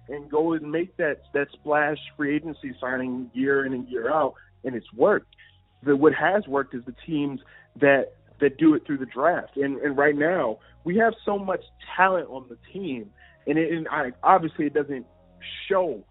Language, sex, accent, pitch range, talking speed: English, male, American, 125-155 Hz, 195 wpm